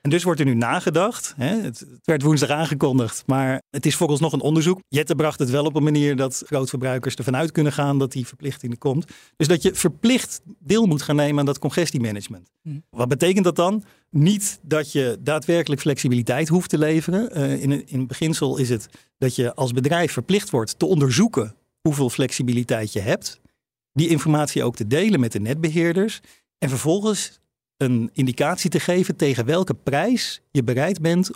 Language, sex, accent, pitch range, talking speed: Dutch, male, Dutch, 130-165 Hz, 180 wpm